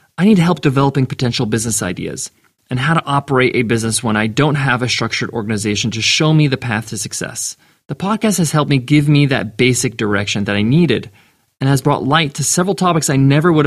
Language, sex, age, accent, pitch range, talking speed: English, male, 30-49, American, 120-150 Hz, 220 wpm